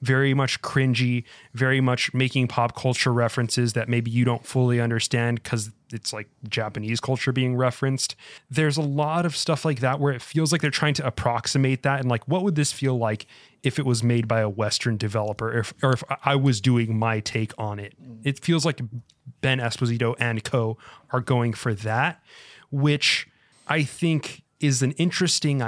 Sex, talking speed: male, 185 wpm